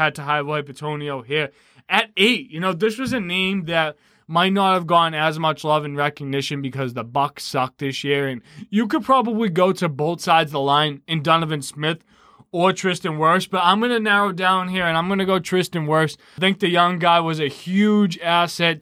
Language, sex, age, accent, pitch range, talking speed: English, male, 20-39, American, 145-175 Hz, 220 wpm